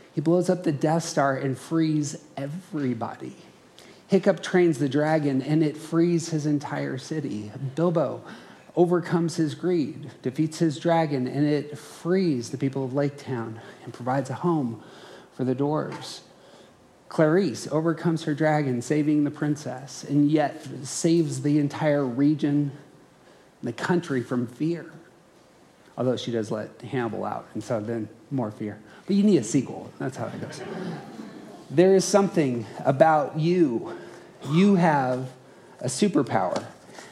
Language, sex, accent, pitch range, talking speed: English, male, American, 135-170 Hz, 140 wpm